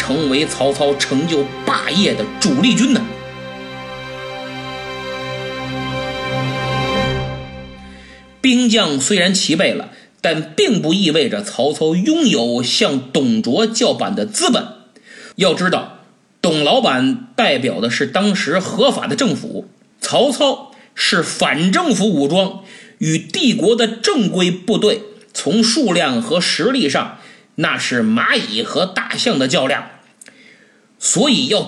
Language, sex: Chinese, male